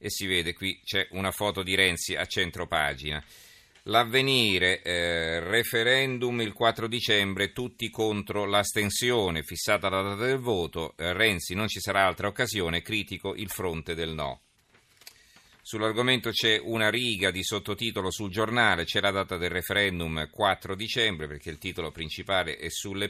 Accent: native